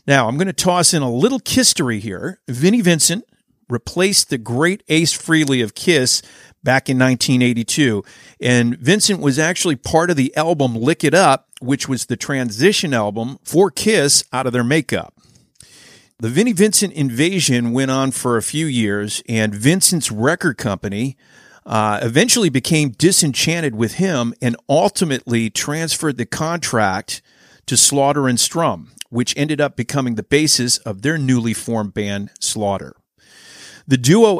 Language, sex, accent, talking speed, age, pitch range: English, male, American, 150 wpm, 50-69, 120-165 Hz